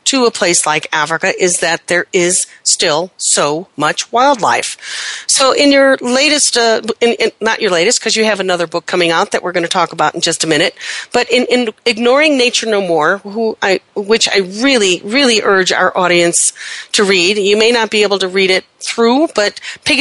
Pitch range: 190-245 Hz